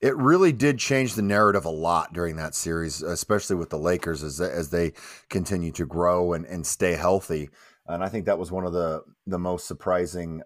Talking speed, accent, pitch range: 205 wpm, American, 90-120 Hz